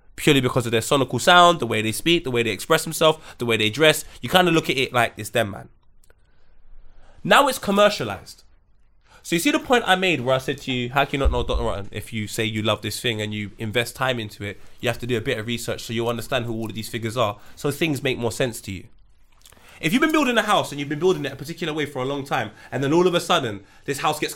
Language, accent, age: English, British, 20-39